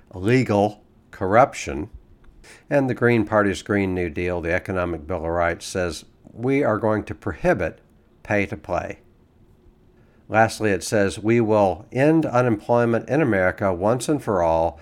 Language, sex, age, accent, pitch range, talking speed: English, male, 60-79, American, 90-115 Hz, 145 wpm